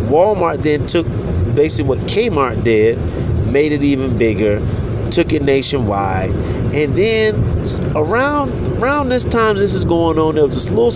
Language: English